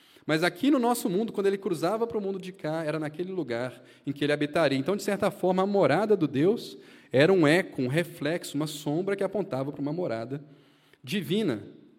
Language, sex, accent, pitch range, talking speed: Portuguese, male, Brazilian, 125-175 Hz, 205 wpm